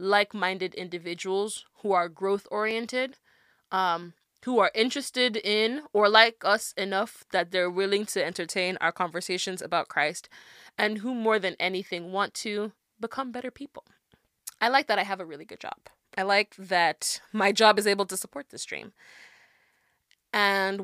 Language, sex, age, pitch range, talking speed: English, female, 20-39, 185-225 Hz, 155 wpm